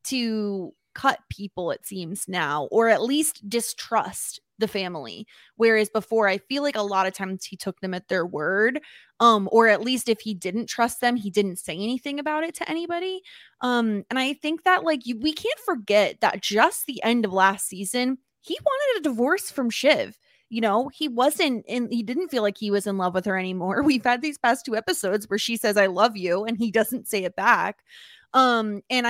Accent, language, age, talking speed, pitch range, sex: American, English, 20-39, 210 wpm, 205-270 Hz, female